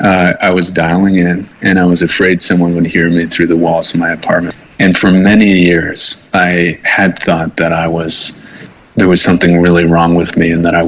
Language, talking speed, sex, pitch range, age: English, 215 wpm, male, 85-90 Hz, 30-49